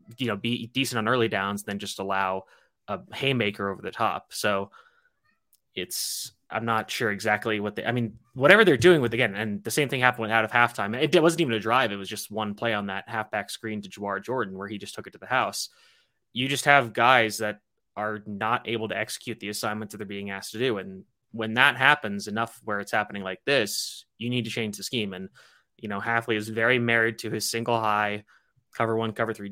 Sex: male